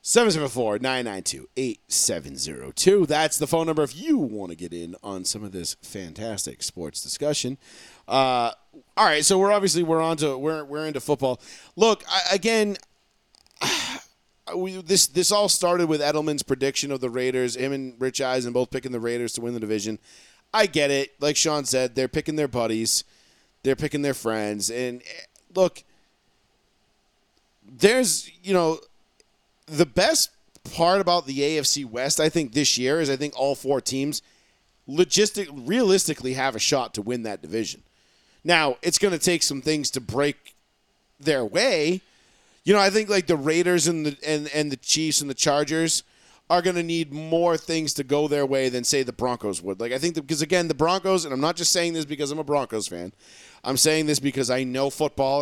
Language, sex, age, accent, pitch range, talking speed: English, male, 40-59, American, 125-165 Hz, 180 wpm